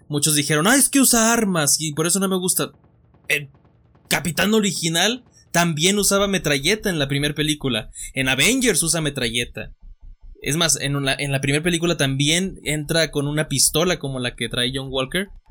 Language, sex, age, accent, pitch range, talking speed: Spanish, male, 20-39, Mexican, 130-160 Hz, 180 wpm